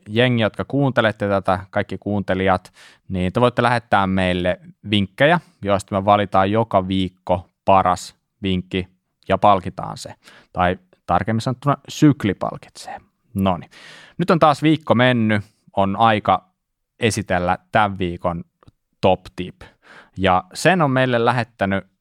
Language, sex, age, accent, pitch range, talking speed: Finnish, male, 20-39, native, 95-125 Hz, 120 wpm